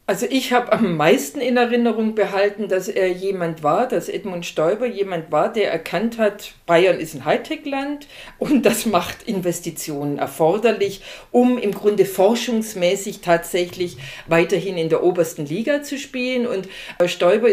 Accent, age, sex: German, 50-69, female